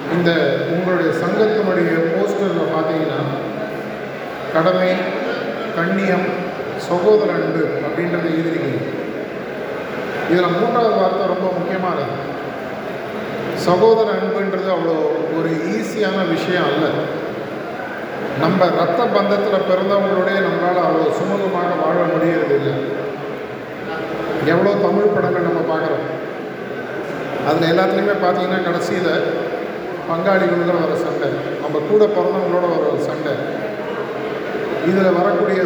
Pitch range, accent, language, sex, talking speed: 180-210 Hz, native, Tamil, male, 90 wpm